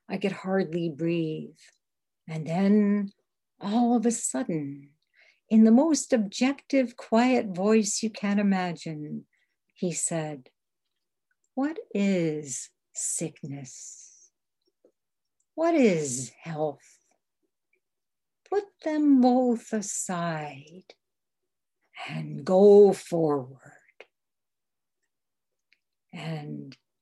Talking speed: 80 wpm